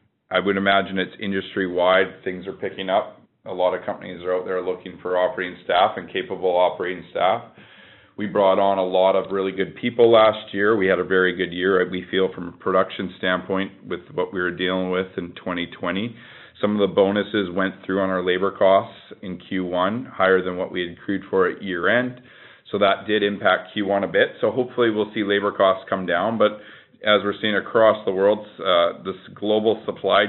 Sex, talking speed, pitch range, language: male, 200 wpm, 95-110 Hz, English